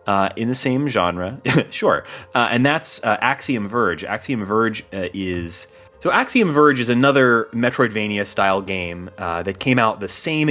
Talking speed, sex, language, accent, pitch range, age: 165 wpm, male, English, American, 90-125 Hz, 30-49